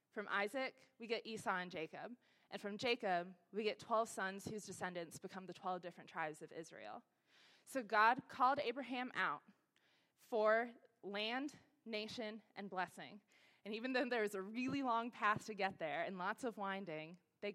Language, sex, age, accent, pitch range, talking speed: English, female, 20-39, American, 180-230 Hz, 170 wpm